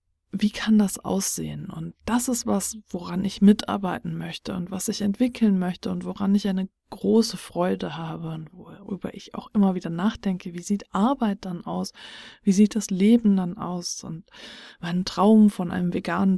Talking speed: 175 wpm